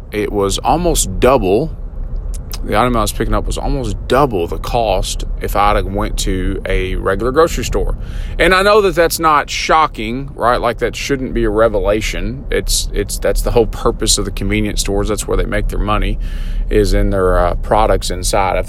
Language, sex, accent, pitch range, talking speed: English, male, American, 90-120 Hz, 195 wpm